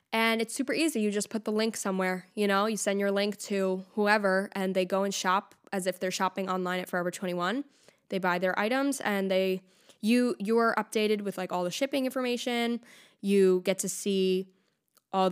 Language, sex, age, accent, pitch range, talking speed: English, female, 10-29, American, 190-240 Hz, 200 wpm